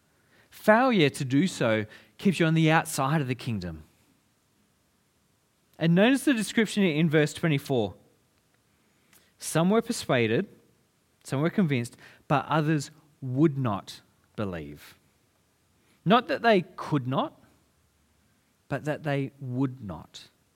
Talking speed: 115 wpm